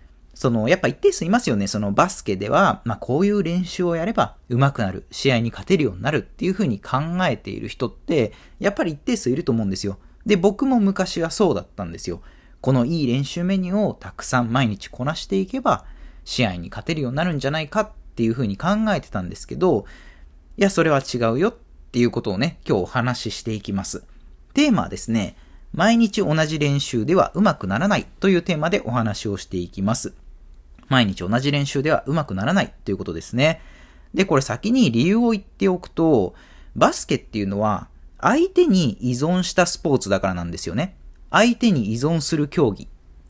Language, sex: Japanese, male